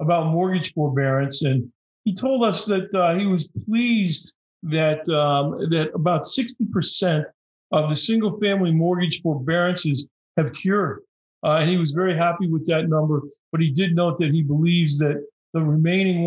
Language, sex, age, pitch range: English, male, 50-69, 150-180 Hz